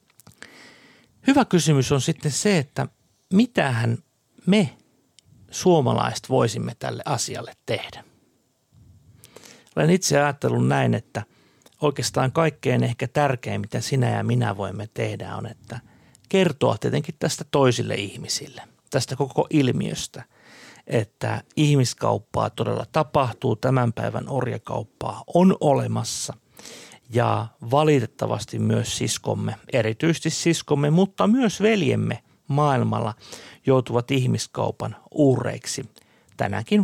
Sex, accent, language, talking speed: male, native, Finnish, 105 wpm